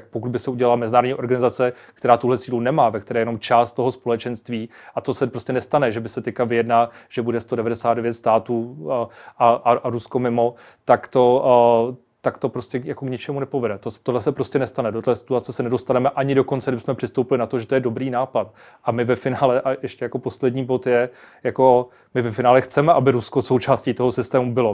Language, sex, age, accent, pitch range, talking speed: Czech, male, 30-49, native, 120-130 Hz, 215 wpm